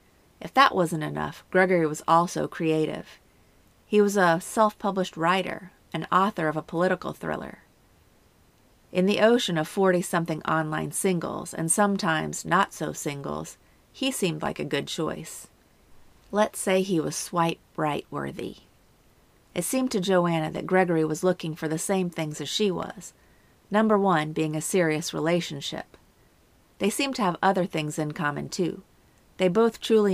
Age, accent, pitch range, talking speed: 40-59, American, 160-195 Hz, 145 wpm